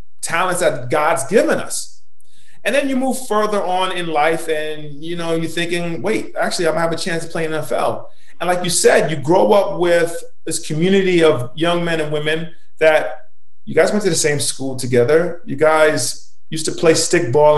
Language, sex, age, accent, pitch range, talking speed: English, male, 30-49, American, 155-185 Hz, 210 wpm